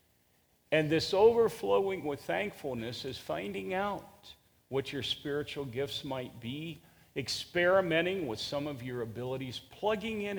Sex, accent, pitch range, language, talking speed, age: male, American, 110-150 Hz, English, 125 wpm, 50-69